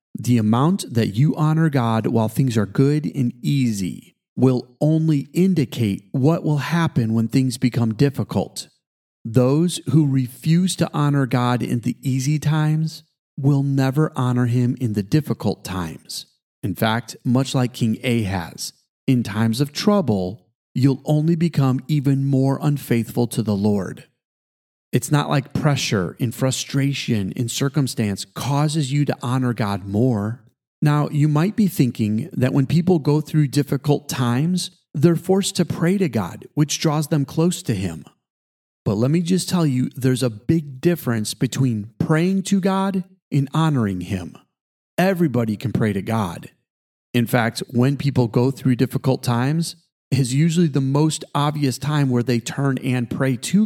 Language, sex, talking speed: English, male, 155 wpm